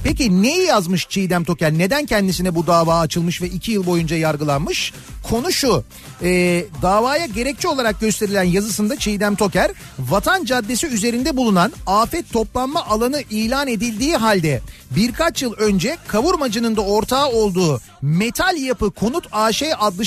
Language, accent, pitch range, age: Turkish, native, 185-255 Hz, 40-59